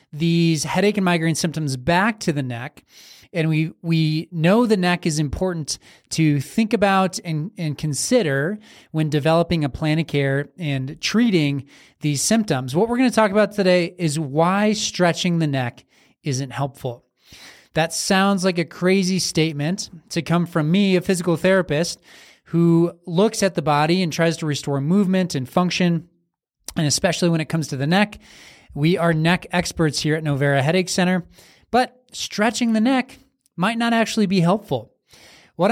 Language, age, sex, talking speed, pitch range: English, 20-39, male, 165 wpm, 155-195 Hz